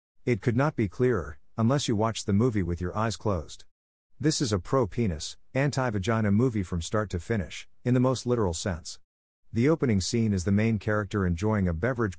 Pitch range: 90-120 Hz